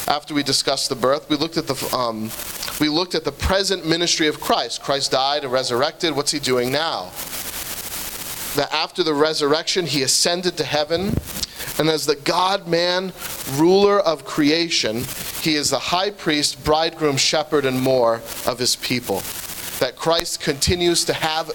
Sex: male